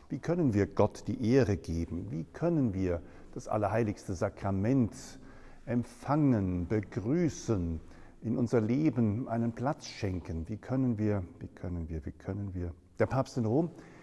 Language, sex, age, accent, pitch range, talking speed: German, male, 50-69, German, 90-110 Hz, 145 wpm